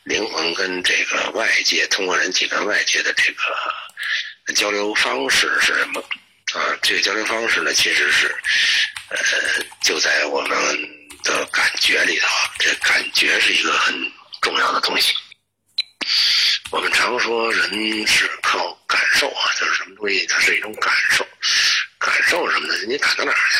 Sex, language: male, Chinese